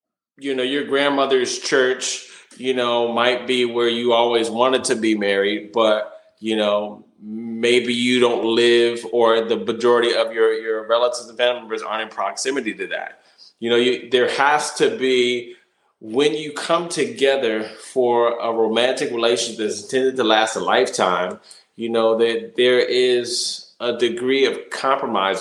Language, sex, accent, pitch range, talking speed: English, male, American, 115-160 Hz, 160 wpm